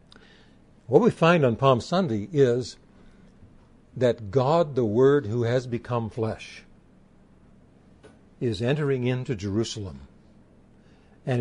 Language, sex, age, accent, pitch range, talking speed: English, male, 60-79, American, 110-145 Hz, 105 wpm